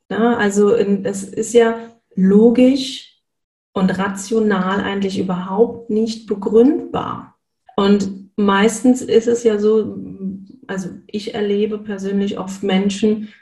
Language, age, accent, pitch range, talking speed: German, 40-59, German, 185-225 Hz, 105 wpm